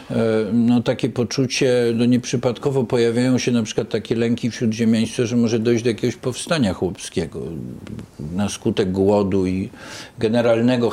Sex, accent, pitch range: male, native, 110-165 Hz